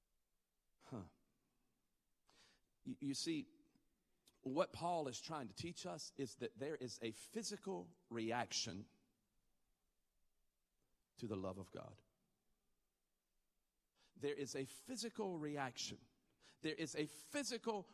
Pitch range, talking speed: 120-165 Hz, 105 wpm